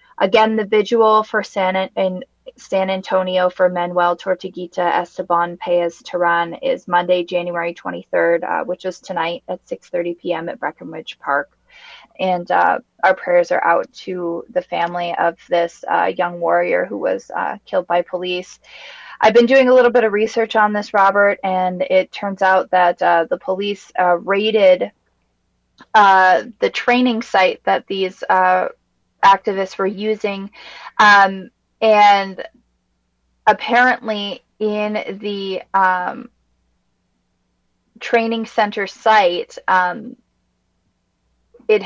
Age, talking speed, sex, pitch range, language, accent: 20-39, 125 wpm, female, 180-220 Hz, English, American